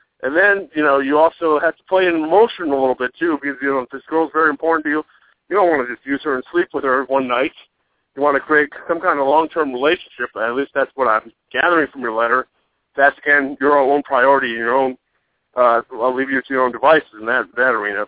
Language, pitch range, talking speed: English, 130-160 Hz, 260 wpm